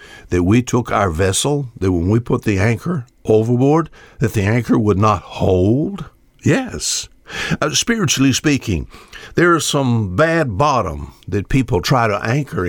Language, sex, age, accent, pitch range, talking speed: English, male, 60-79, American, 110-150 Hz, 150 wpm